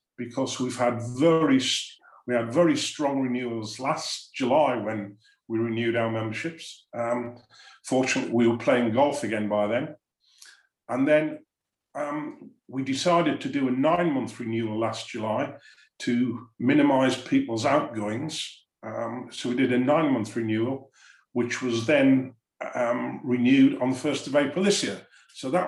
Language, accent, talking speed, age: English, British, 145 wpm, 50-69